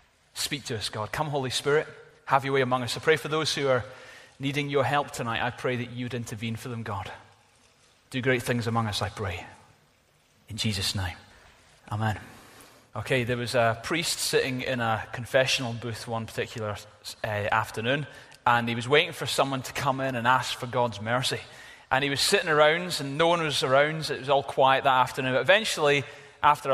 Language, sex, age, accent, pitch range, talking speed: English, male, 30-49, British, 120-155 Hz, 195 wpm